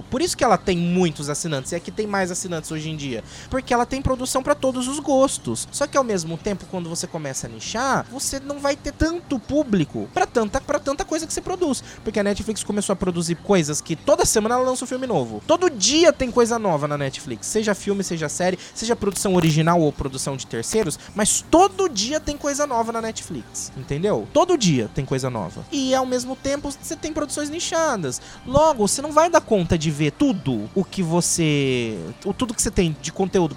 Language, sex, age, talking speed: Portuguese, male, 20-39, 215 wpm